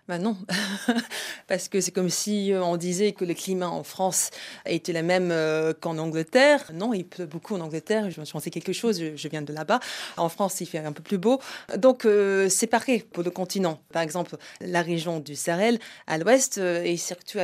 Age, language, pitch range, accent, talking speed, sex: 30-49, French, 170-225 Hz, French, 205 wpm, female